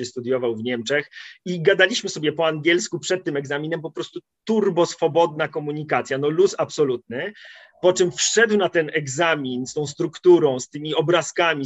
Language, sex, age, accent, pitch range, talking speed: Polish, male, 30-49, native, 145-180 Hz, 160 wpm